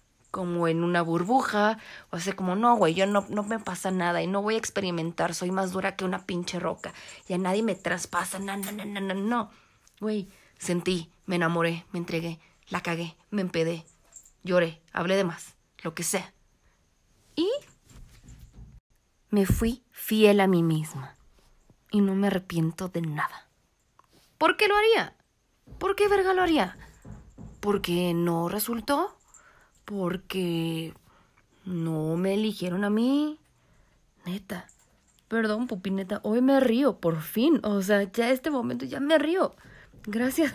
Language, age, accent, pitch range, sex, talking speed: Spanish, 30-49, Mexican, 175-225 Hz, female, 150 wpm